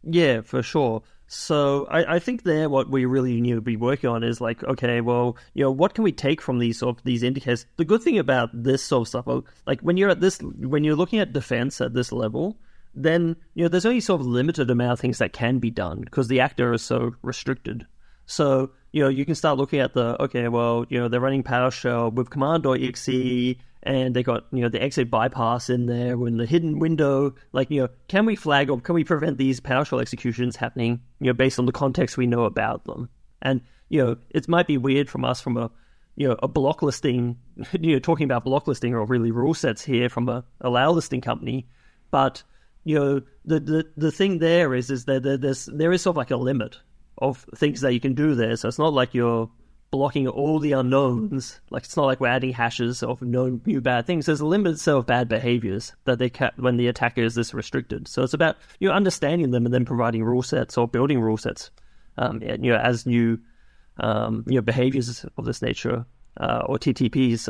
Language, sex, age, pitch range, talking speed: English, male, 30-49, 120-145 Hz, 230 wpm